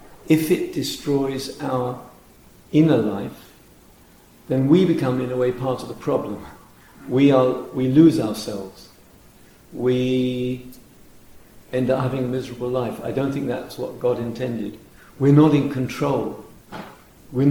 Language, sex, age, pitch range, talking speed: English, male, 50-69, 110-130 Hz, 135 wpm